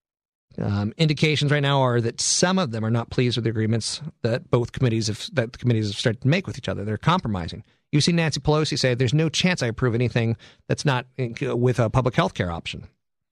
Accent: American